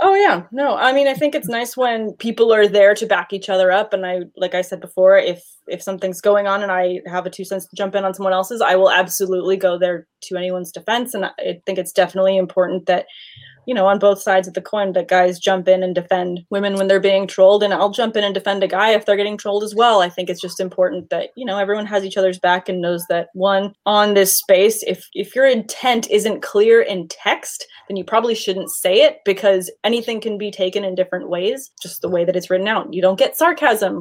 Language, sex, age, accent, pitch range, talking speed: English, female, 20-39, American, 185-210 Hz, 250 wpm